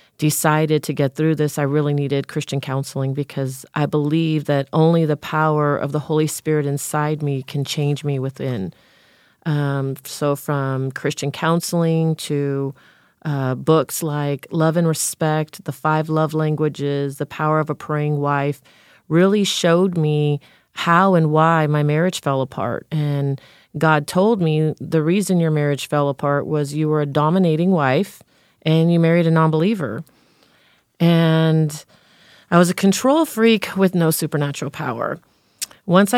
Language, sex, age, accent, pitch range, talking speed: English, female, 40-59, American, 145-175 Hz, 155 wpm